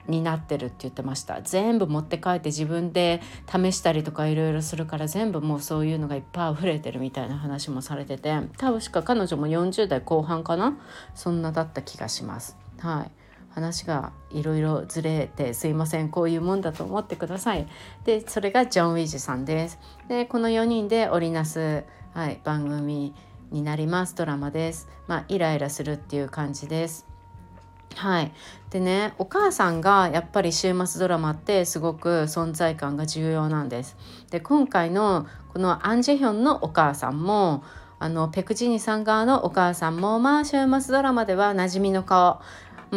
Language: Japanese